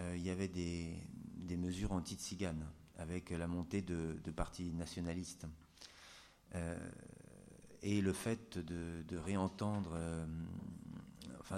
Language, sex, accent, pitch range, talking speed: French, male, French, 85-100 Hz, 115 wpm